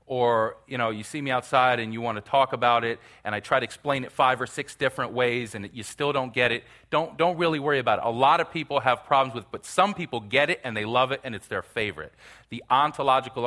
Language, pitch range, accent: English, 110-145 Hz, American